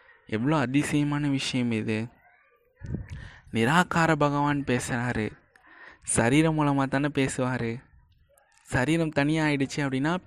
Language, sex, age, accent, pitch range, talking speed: Tamil, male, 20-39, native, 115-145 Hz, 90 wpm